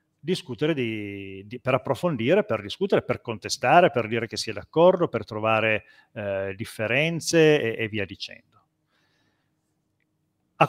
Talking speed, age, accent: 125 wpm, 40-59, native